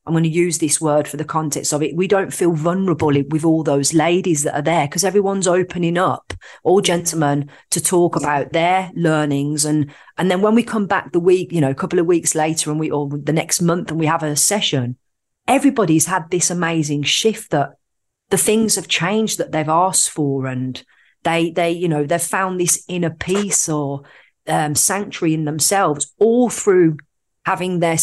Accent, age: British, 40-59